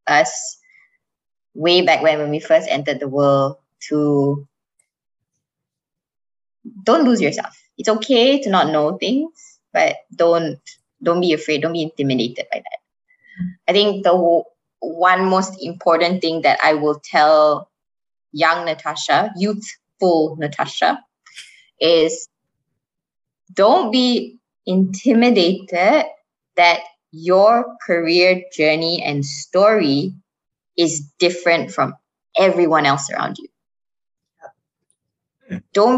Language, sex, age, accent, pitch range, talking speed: English, female, 20-39, Malaysian, 165-215 Hz, 105 wpm